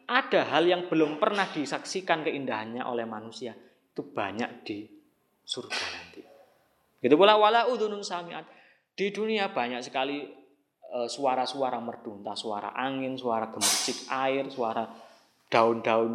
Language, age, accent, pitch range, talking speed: Indonesian, 20-39, native, 120-165 Hz, 110 wpm